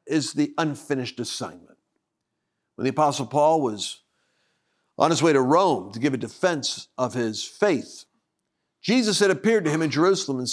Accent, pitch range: American, 150-205 Hz